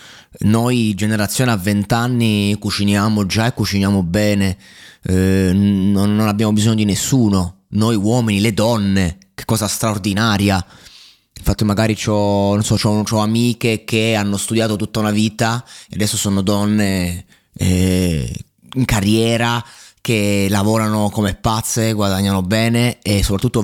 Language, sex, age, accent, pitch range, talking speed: Italian, male, 20-39, native, 95-110 Hz, 125 wpm